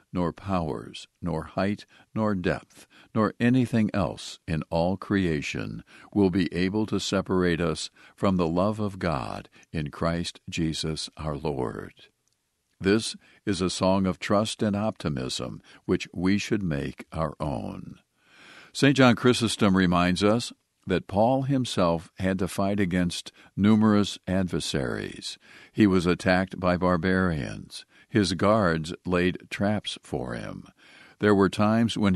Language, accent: English, American